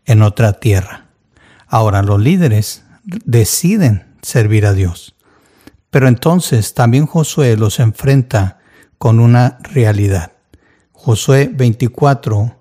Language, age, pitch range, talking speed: Spanish, 60-79, 115-140 Hz, 100 wpm